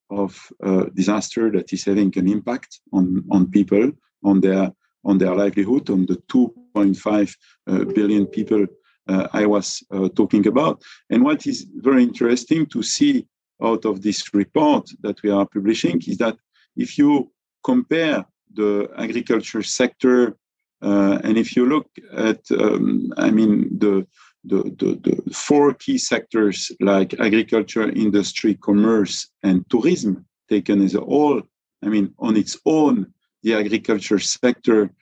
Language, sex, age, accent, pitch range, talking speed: English, male, 50-69, French, 95-115 Hz, 145 wpm